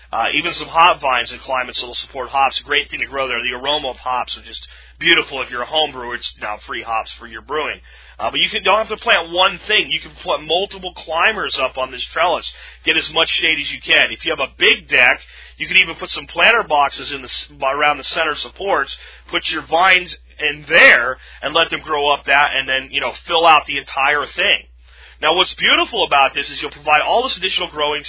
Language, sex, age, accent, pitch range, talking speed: English, male, 40-59, American, 115-175 Hz, 240 wpm